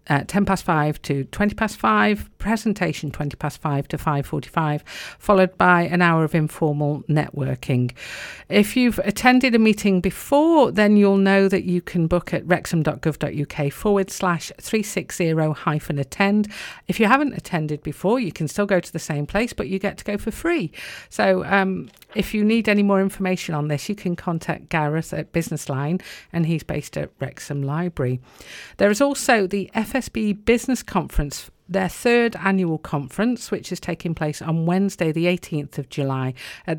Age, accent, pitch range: 50-69, British, 155-205 Hz